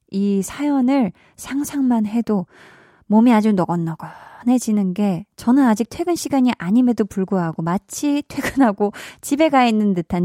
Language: Korean